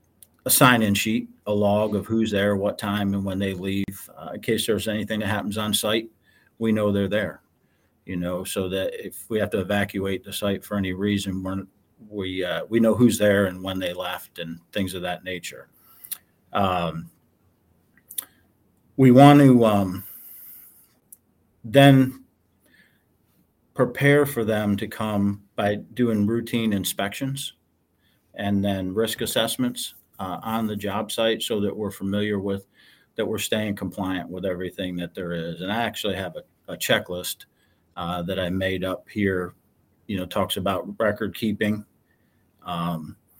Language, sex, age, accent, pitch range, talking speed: English, male, 50-69, American, 95-110 Hz, 160 wpm